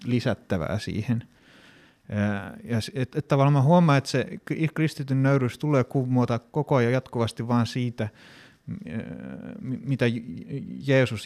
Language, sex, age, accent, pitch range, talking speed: Finnish, male, 30-49, native, 110-135 Hz, 100 wpm